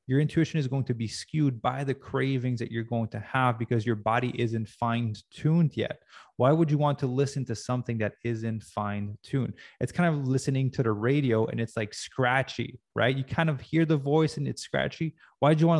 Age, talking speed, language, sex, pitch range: 20-39, 215 wpm, English, male, 110-135 Hz